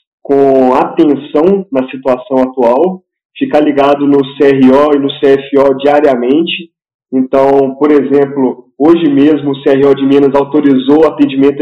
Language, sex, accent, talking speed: Portuguese, male, Brazilian, 125 wpm